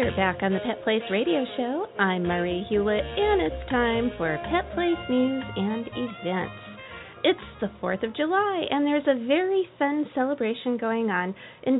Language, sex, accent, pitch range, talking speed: English, female, American, 195-285 Hz, 175 wpm